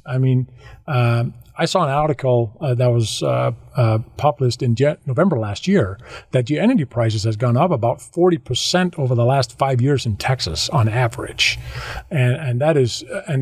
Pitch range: 120-150 Hz